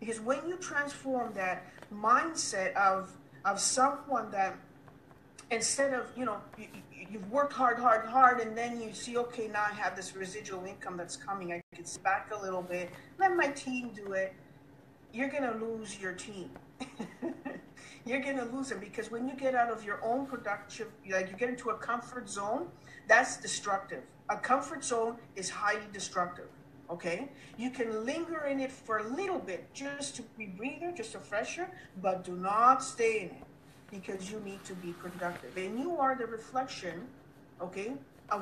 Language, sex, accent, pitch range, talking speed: English, female, American, 185-255 Hz, 180 wpm